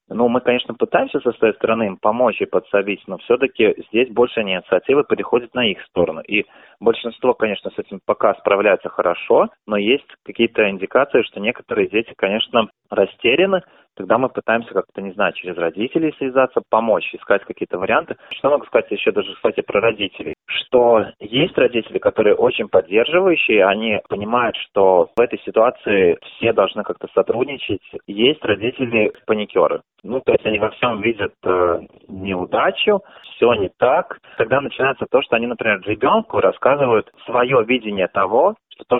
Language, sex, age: Russian, male, 20-39